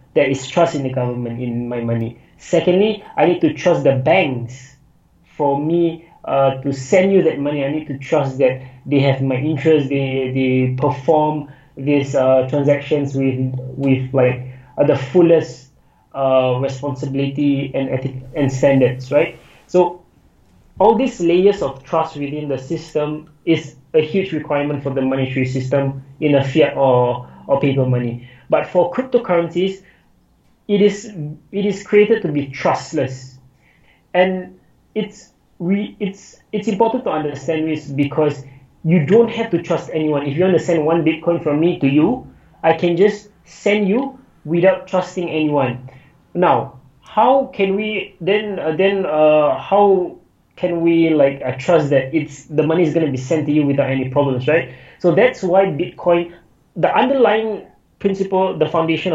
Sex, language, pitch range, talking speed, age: male, English, 135-175 Hz, 160 wpm, 20-39